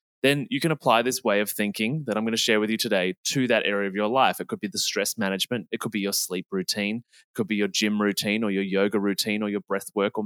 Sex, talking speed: male, 285 wpm